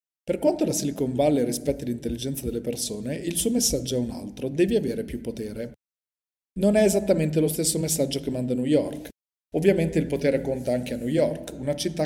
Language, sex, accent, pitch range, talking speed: Italian, male, native, 120-180 Hz, 195 wpm